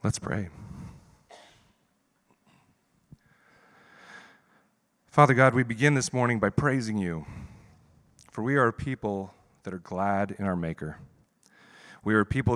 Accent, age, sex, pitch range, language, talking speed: American, 40-59, male, 100-125 Hz, English, 125 wpm